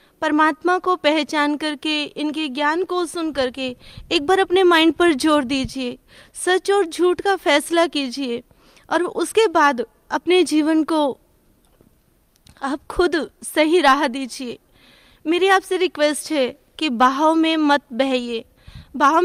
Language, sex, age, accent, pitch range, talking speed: Hindi, female, 20-39, native, 280-335 Hz, 135 wpm